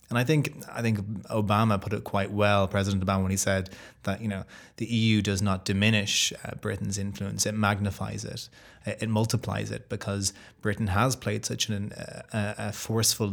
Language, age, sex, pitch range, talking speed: English, 20-39, male, 100-110 Hz, 190 wpm